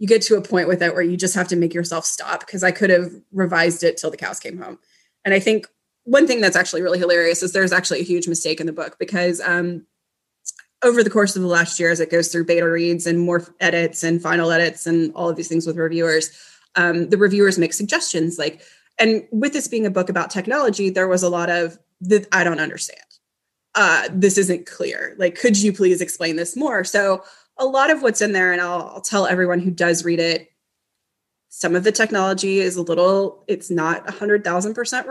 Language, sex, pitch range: English, female, 170-200 Hz